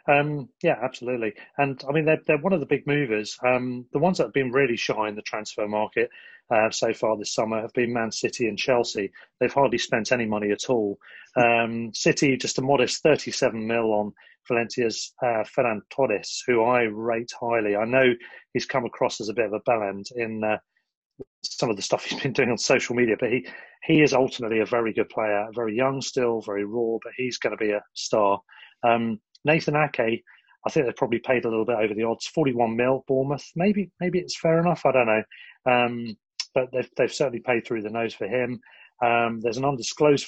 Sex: male